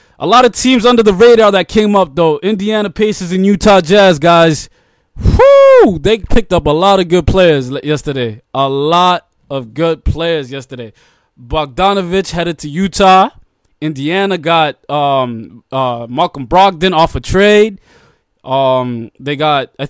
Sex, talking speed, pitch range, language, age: male, 150 wpm, 145-200 Hz, English, 20-39